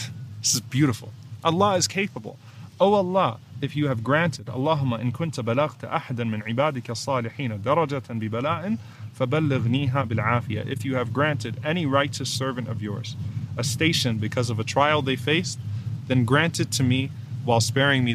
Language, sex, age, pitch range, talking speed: English, male, 30-49, 115-140 Hz, 125 wpm